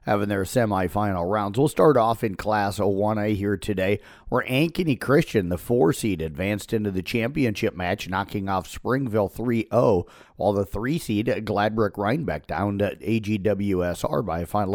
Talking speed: 145 wpm